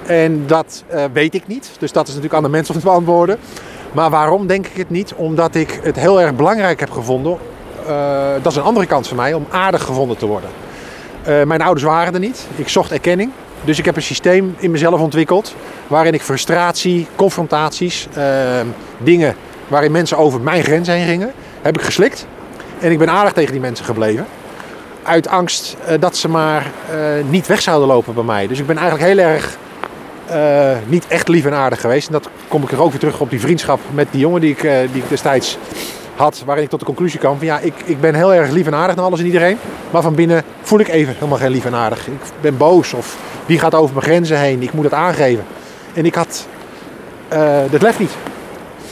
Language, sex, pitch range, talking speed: Dutch, male, 145-175 Hz, 225 wpm